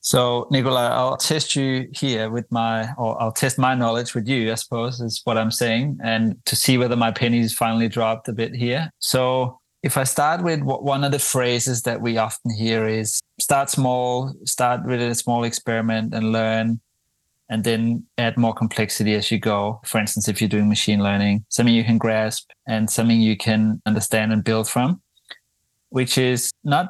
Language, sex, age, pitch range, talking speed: English, male, 30-49, 115-125 Hz, 190 wpm